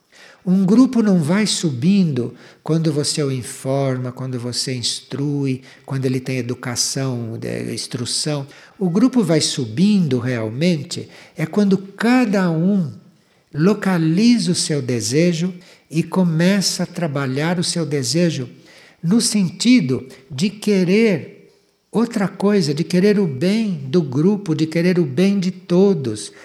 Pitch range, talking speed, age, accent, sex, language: 140-195 Hz, 125 wpm, 60-79, Brazilian, male, Portuguese